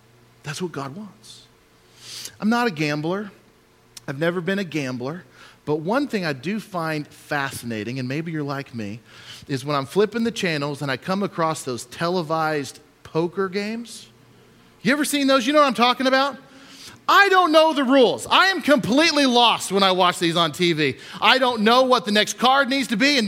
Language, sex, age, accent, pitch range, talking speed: English, male, 40-59, American, 140-210 Hz, 195 wpm